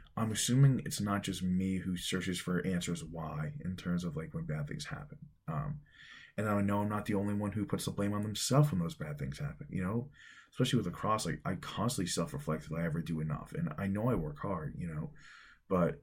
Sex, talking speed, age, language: male, 235 wpm, 20-39, English